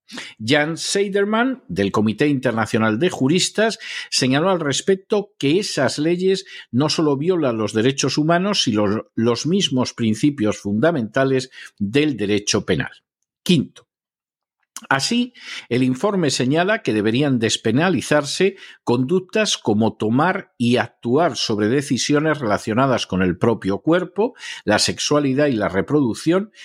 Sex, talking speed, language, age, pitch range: male, 115 wpm, Spanish, 50-69, 110-170 Hz